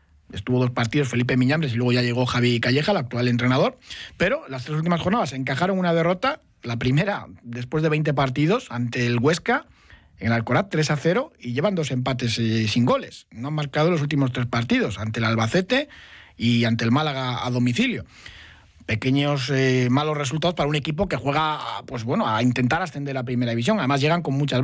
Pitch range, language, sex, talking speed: 120-155 Hz, Spanish, male, 190 wpm